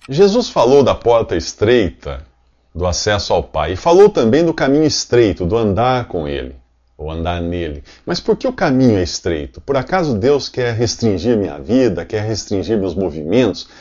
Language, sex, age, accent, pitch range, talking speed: English, male, 50-69, Brazilian, 80-125 Hz, 175 wpm